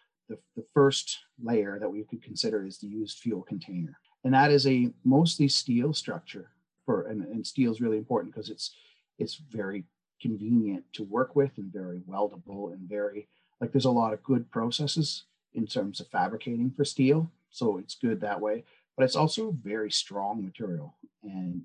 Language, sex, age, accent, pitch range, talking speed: English, male, 40-59, American, 105-135 Hz, 180 wpm